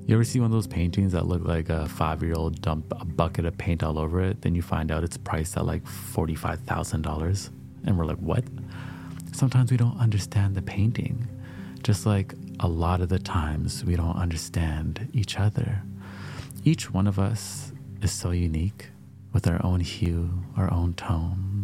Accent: American